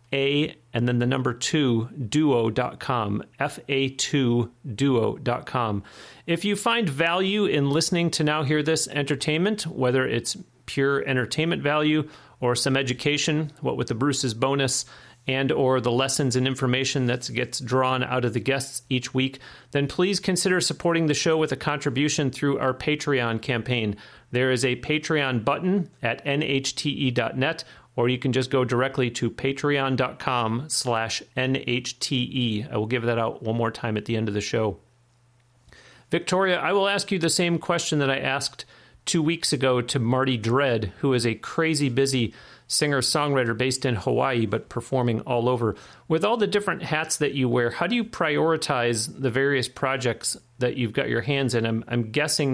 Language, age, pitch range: English, 40-59, 120-150 Hz